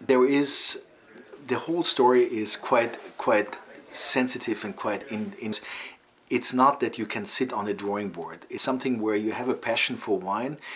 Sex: male